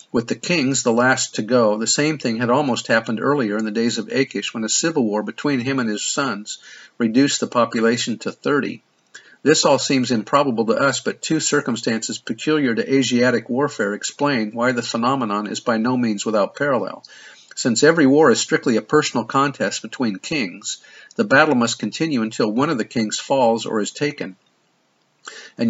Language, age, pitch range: English, 50-69, 115-135 Hz